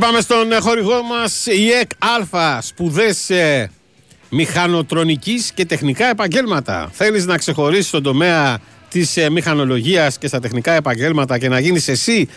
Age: 50-69